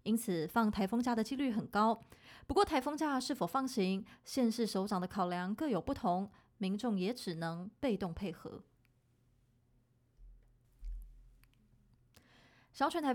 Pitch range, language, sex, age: 190-245 Hz, Chinese, female, 20-39